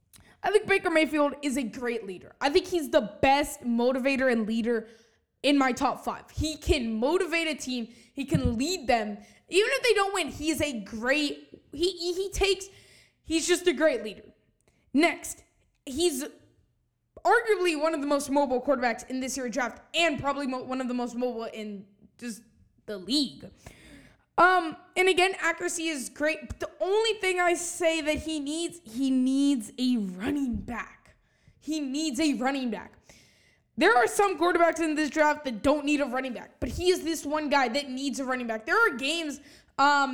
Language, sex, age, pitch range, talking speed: English, female, 10-29, 250-325 Hz, 185 wpm